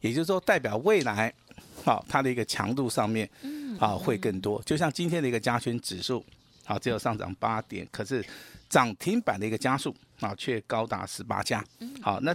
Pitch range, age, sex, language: 110-140 Hz, 50-69, male, Chinese